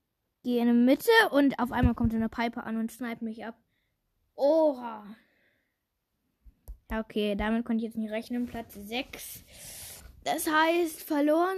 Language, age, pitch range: German, 10-29, 225-285 Hz